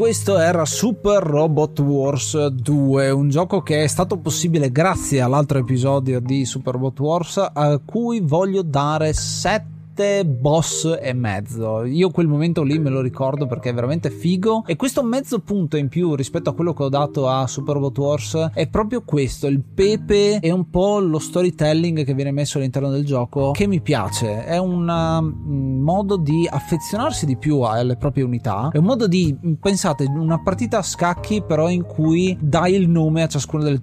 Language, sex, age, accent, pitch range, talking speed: Italian, male, 30-49, native, 135-165 Hz, 180 wpm